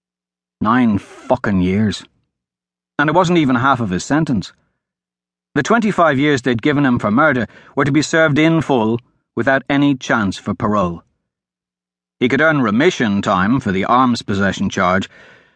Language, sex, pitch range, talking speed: English, male, 95-140 Hz, 155 wpm